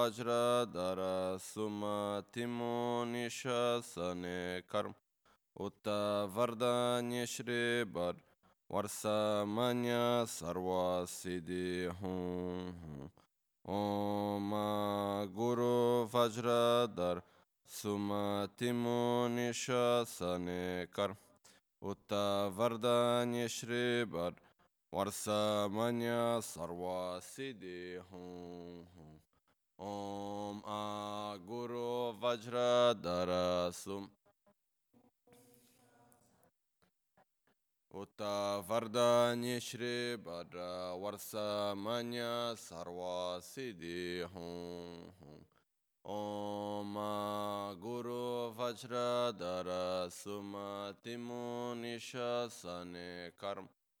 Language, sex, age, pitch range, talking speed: Italian, male, 20-39, 90-120 Hz, 35 wpm